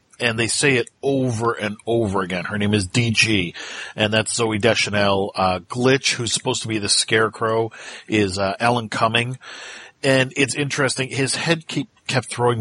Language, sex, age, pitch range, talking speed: English, male, 40-59, 100-125 Hz, 170 wpm